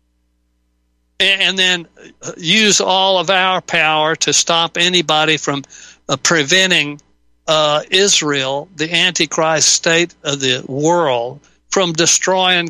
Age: 60-79